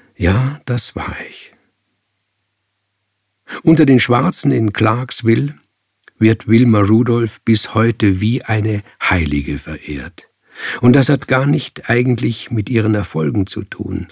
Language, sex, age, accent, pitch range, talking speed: German, male, 50-69, German, 105-125 Hz, 125 wpm